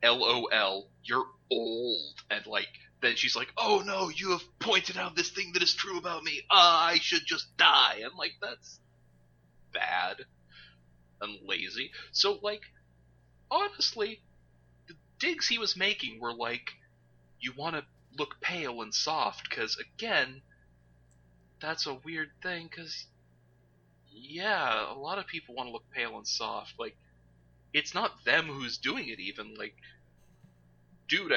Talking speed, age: 145 wpm, 30-49